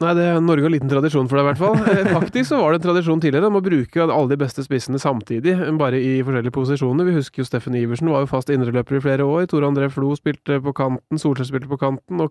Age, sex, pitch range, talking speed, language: 20-39, male, 130-155 Hz, 270 wpm, English